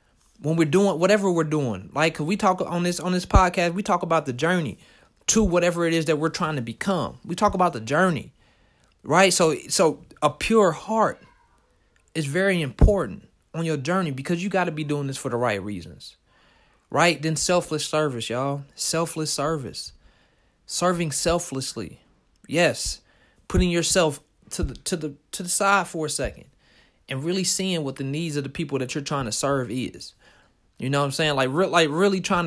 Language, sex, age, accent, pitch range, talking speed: English, male, 30-49, American, 145-185 Hz, 190 wpm